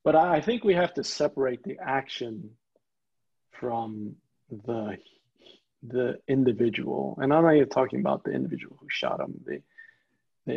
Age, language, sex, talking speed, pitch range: 40-59, English, male, 150 wpm, 120-150 Hz